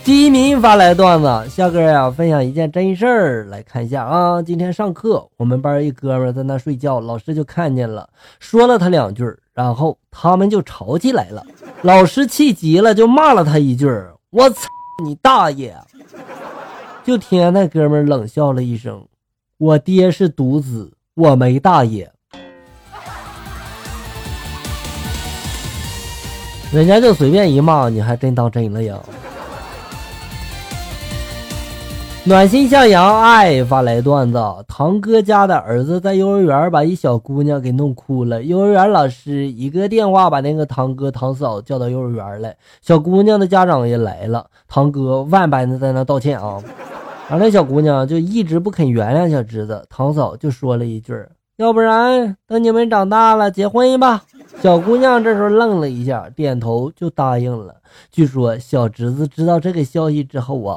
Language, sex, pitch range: Chinese, male, 120-190 Hz